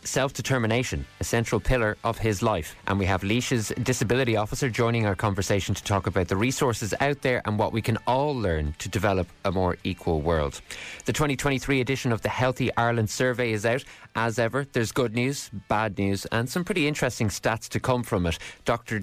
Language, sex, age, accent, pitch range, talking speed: English, male, 20-39, Irish, 95-115 Hz, 195 wpm